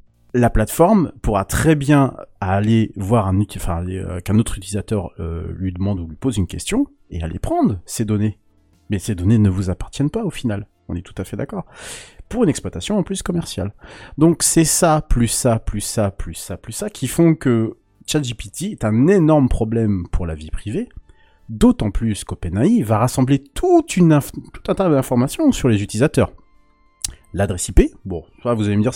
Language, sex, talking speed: French, male, 180 wpm